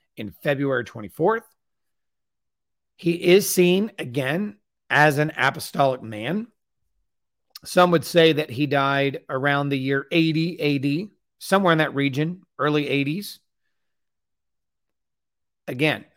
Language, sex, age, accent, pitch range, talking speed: English, male, 40-59, American, 135-170 Hz, 110 wpm